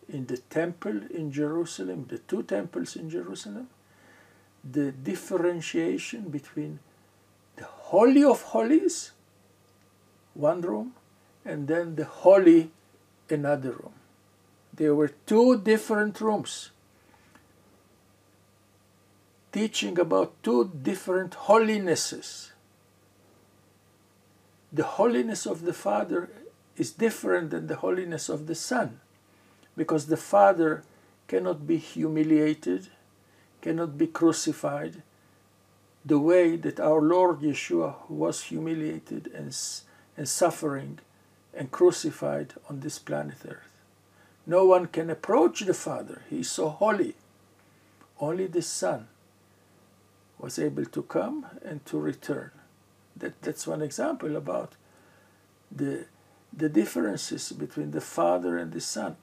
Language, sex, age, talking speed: English, male, 60-79, 110 wpm